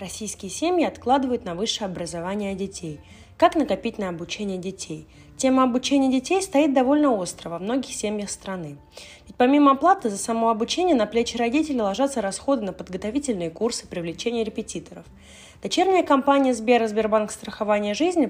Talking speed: 145 wpm